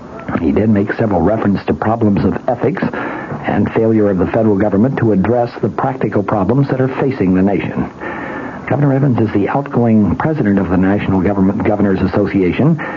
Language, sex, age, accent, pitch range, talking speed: English, male, 60-79, American, 100-120 Hz, 170 wpm